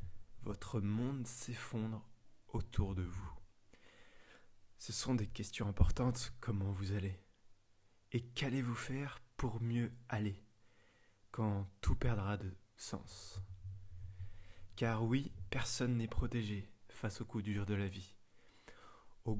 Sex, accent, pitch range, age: male, French, 100-115 Hz, 20-39